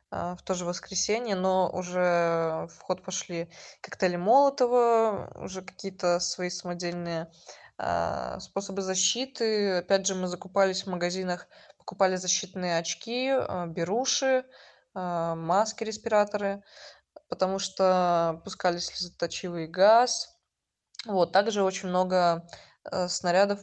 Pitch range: 175-205 Hz